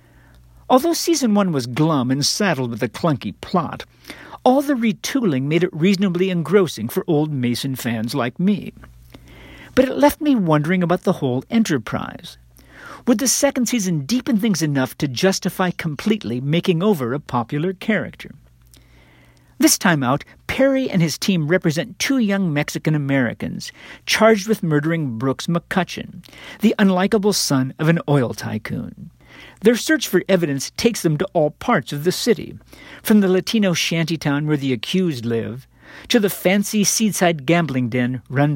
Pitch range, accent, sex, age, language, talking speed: 135-205 Hz, American, male, 50-69, English, 155 wpm